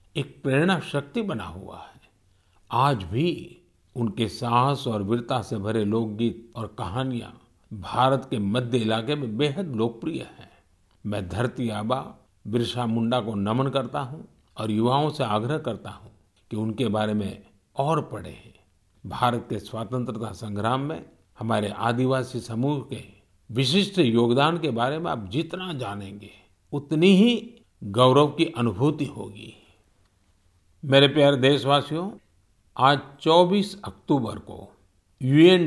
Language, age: Hindi, 50-69